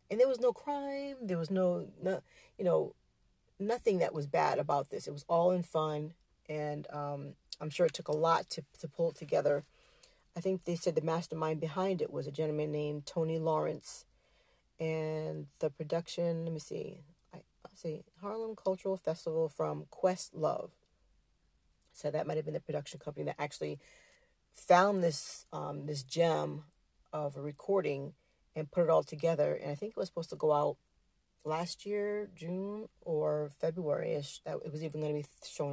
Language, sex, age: English, female, 40-59